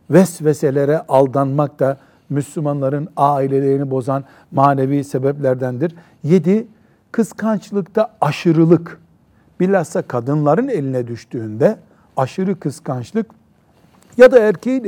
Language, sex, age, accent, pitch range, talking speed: Turkish, male, 60-79, native, 130-175 Hz, 80 wpm